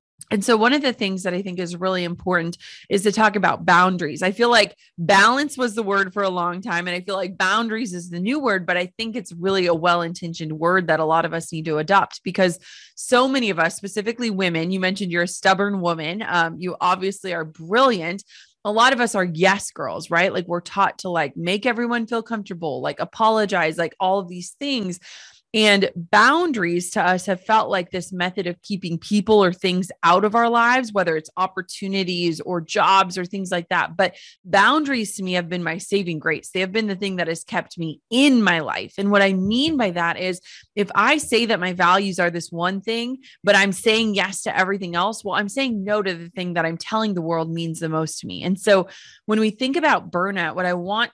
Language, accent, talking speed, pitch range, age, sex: English, American, 230 wpm, 175-215 Hz, 30-49, female